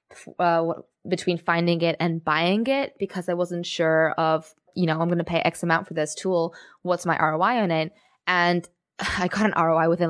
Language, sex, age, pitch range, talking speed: English, female, 20-39, 165-185 Hz, 200 wpm